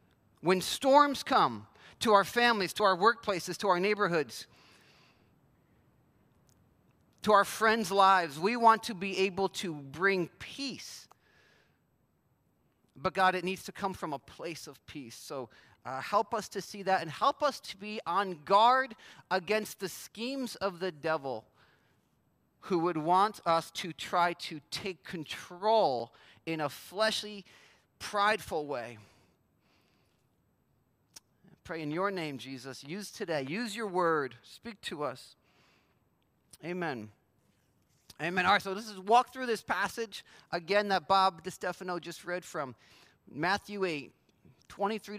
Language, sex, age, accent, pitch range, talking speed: English, male, 40-59, American, 165-215 Hz, 135 wpm